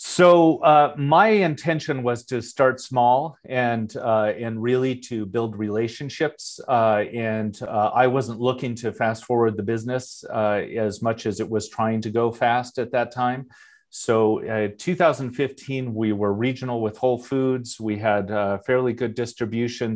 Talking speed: 160 wpm